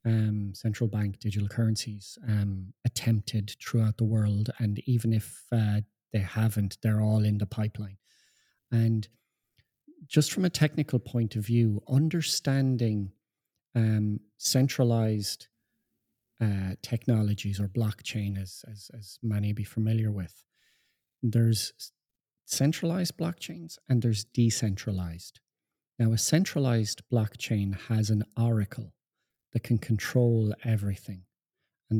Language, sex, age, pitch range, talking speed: English, male, 30-49, 105-120 Hz, 115 wpm